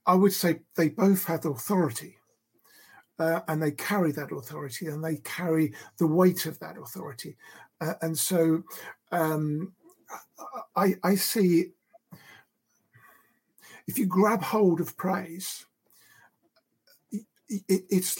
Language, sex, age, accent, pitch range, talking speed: English, male, 50-69, British, 155-190 Hz, 115 wpm